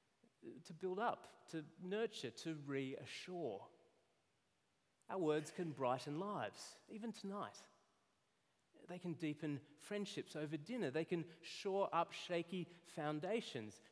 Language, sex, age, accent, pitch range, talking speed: English, male, 30-49, Australian, 135-180 Hz, 110 wpm